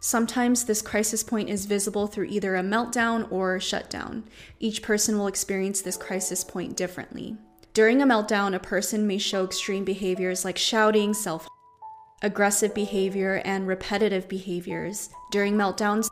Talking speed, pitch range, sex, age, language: 150 wpm, 190-220 Hz, female, 20-39, English